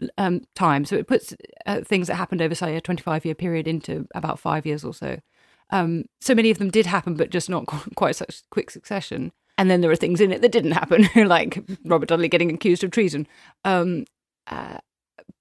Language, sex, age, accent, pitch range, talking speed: English, female, 30-49, British, 155-190 Hz, 205 wpm